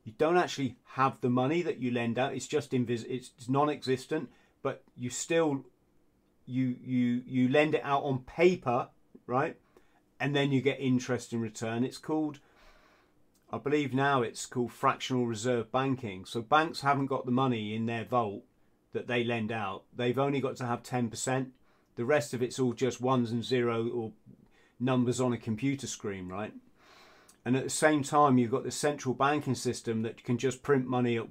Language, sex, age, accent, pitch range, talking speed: English, male, 40-59, British, 115-135 Hz, 185 wpm